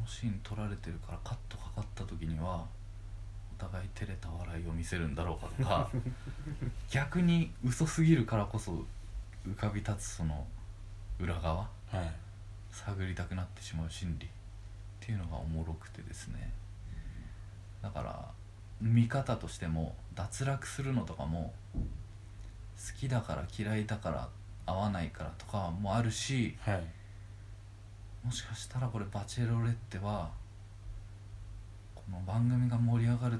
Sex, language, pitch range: male, Japanese, 95-110 Hz